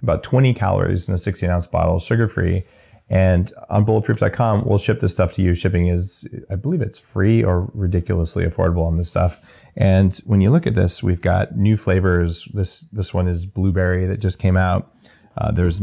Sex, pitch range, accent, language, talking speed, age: male, 90-110 Hz, American, English, 195 wpm, 30-49